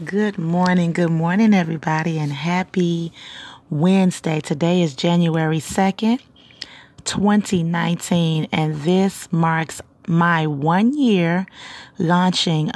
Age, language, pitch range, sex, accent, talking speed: 30-49, English, 155-175 Hz, female, American, 100 wpm